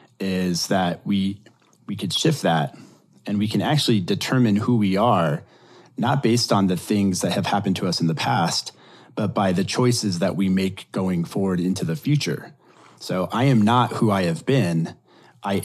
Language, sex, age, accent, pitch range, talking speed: English, male, 30-49, American, 95-120 Hz, 190 wpm